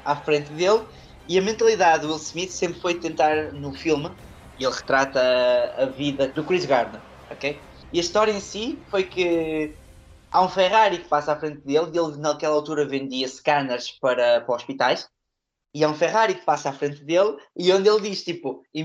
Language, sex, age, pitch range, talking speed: Portuguese, male, 20-39, 135-180 Hz, 195 wpm